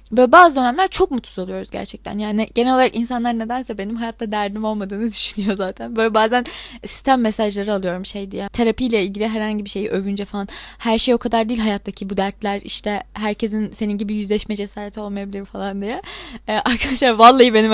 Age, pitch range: 20-39, 210-280 Hz